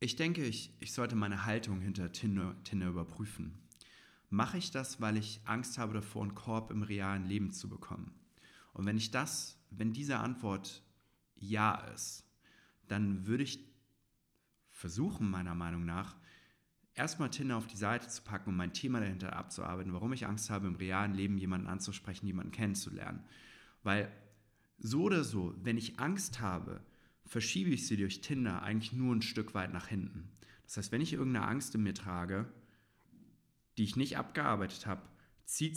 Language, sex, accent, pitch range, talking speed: German, male, German, 100-130 Hz, 170 wpm